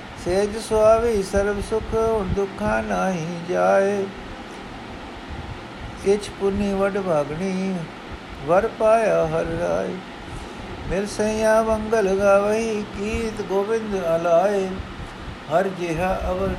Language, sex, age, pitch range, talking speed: Punjabi, male, 60-79, 175-215 Hz, 85 wpm